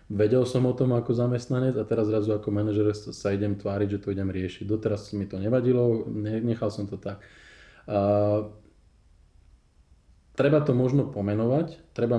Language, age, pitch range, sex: Slovak, 20-39, 100-110 Hz, male